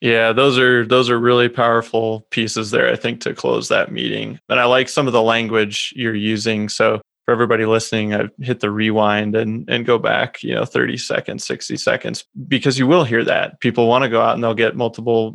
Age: 20-39